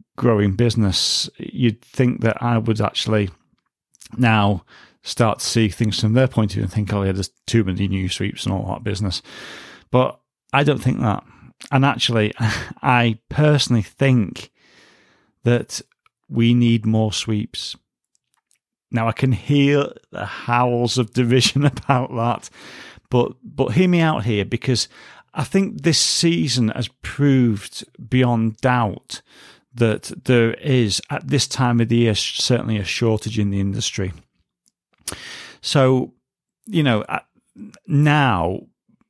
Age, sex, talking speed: 30-49, male, 140 wpm